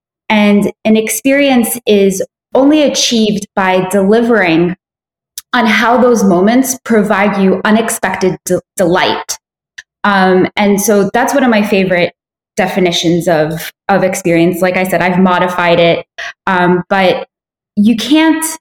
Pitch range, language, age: 180-220 Hz, English, 20-39